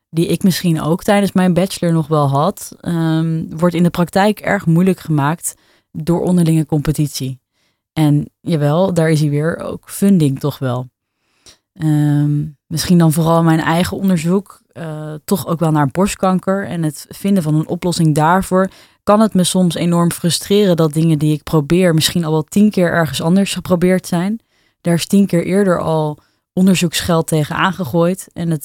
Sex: female